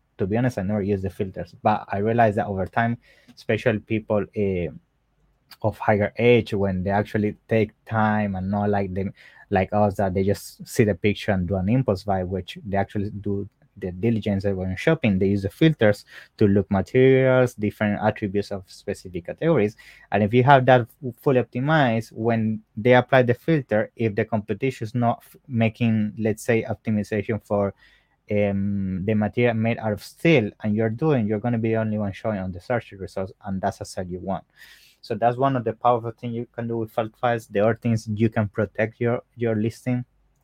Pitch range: 100-120 Hz